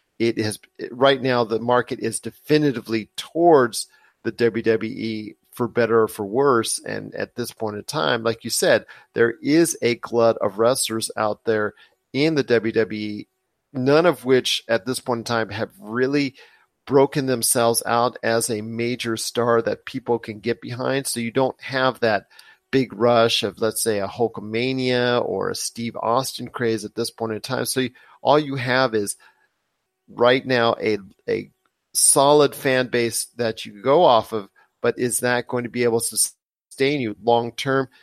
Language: English